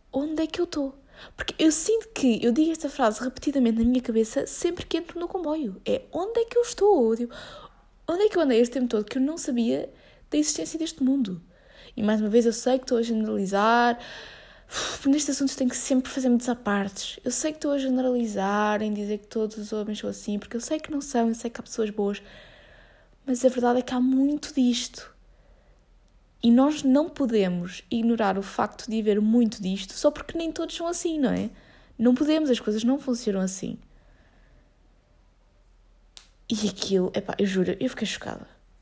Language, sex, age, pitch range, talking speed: Portuguese, female, 20-39, 200-270 Hz, 200 wpm